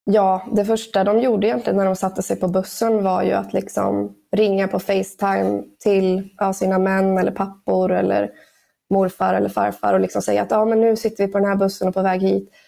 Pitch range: 190-210 Hz